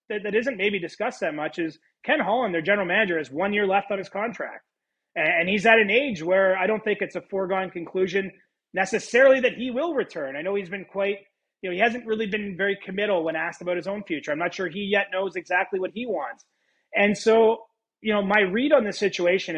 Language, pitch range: English, 170-210 Hz